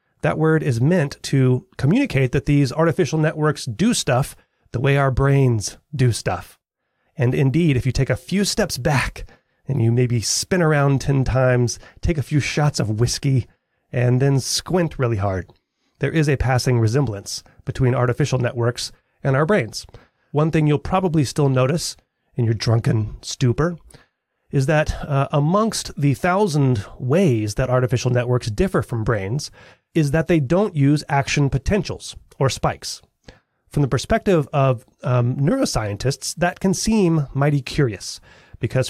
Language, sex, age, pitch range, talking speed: English, male, 30-49, 120-155 Hz, 155 wpm